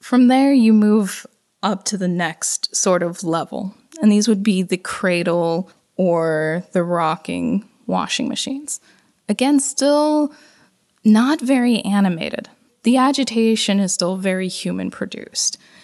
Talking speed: 130 wpm